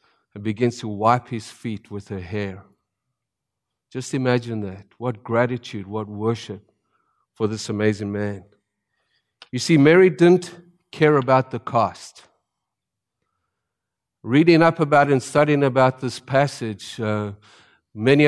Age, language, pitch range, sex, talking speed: 50-69, English, 110-135 Hz, male, 125 wpm